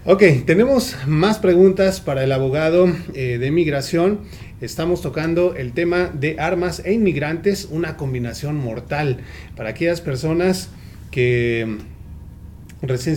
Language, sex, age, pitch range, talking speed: Spanish, male, 30-49, 125-175 Hz, 120 wpm